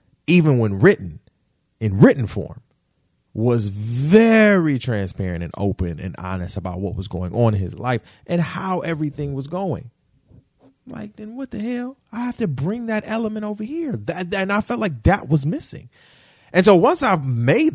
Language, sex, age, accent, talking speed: English, male, 30-49, American, 175 wpm